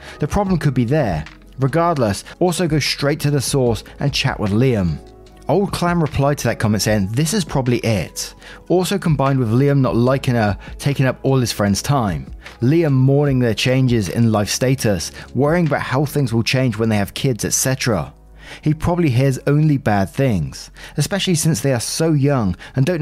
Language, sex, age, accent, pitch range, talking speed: English, male, 30-49, British, 110-150 Hz, 190 wpm